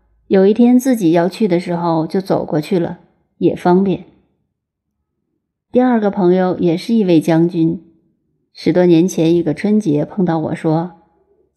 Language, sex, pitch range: Chinese, female, 170-210 Hz